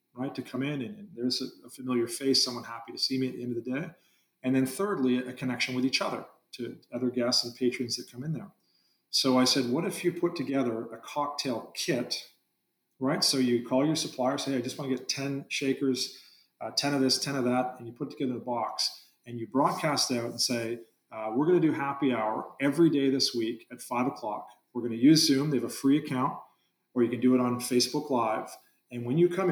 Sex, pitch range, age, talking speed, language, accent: male, 125-145 Hz, 40-59, 240 wpm, English, American